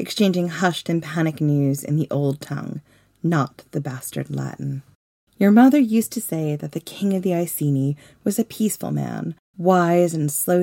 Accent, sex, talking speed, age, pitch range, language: American, female, 175 wpm, 30-49, 145-185 Hz, English